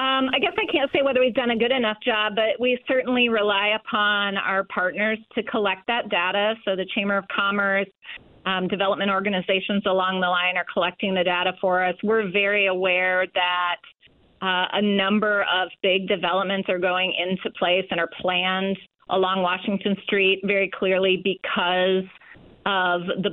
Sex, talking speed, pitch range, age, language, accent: female, 170 wpm, 180-205 Hz, 30-49, English, American